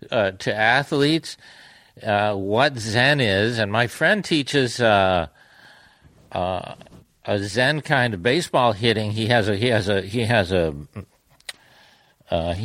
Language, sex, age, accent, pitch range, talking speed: English, male, 60-79, American, 110-150 Hz, 140 wpm